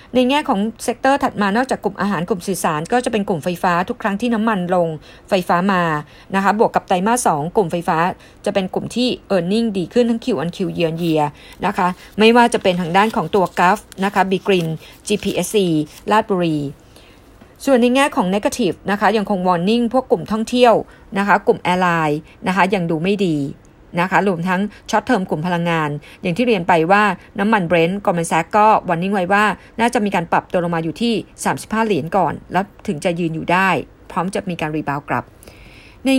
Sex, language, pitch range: female, Thai, 175-225 Hz